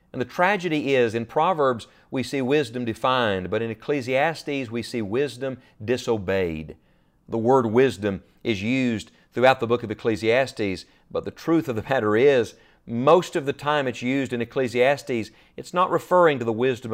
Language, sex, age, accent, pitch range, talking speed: English, male, 40-59, American, 110-150 Hz, 170 wpm